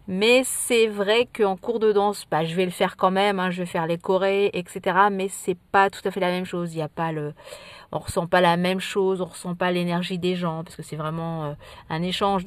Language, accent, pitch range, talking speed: French, French, 175-210 Hz, 275 wpm